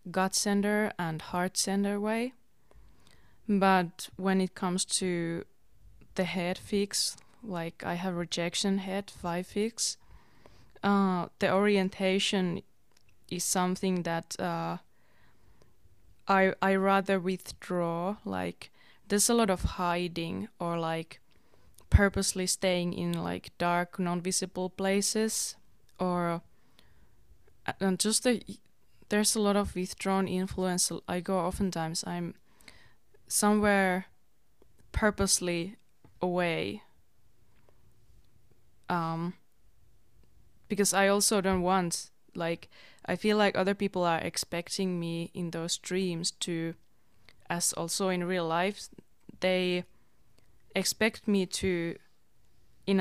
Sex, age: female, 20-39